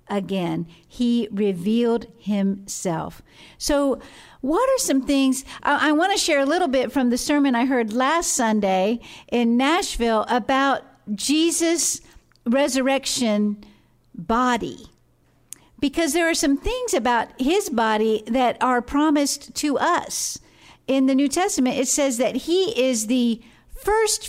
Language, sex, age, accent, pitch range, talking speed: English, female, 50-69, American, 235-295 Hz, 130 wpm